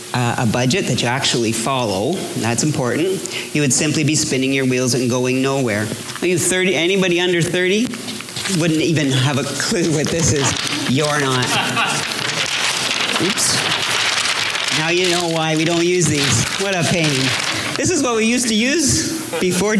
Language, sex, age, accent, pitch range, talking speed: English, male, 40-59, American, 140-195 Hz, 165 wpm